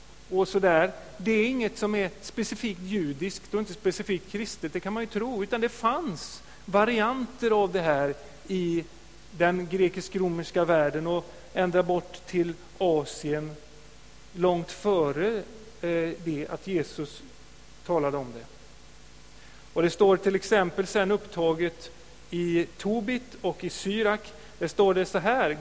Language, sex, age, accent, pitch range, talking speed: Swedish, male, 40-59, native, 155-200 Hz, 135 wpm